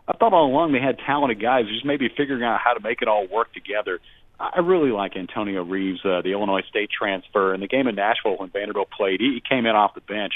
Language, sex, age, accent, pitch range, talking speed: English, male, 40-59, American, 100-115 Hz, 250 wpm